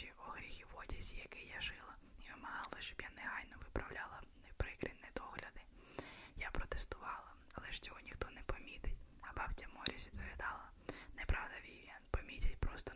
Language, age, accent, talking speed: Ukrainian, 20-39, native, 140 wpm